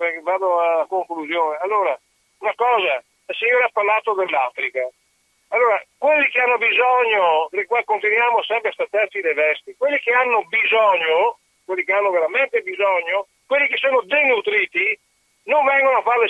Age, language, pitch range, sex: 50-69, Italian, 190-280 Hz, male